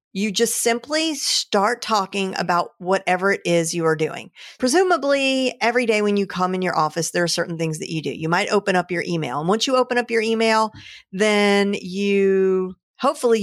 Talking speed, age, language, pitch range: 195 wpm, 40-59, English, 175-225 Hz